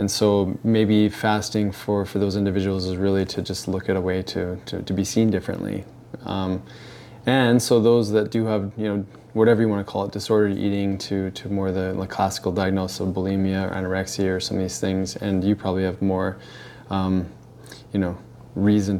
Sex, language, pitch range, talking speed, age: male, English, 95-110 Hz, 200 wpm, 20-39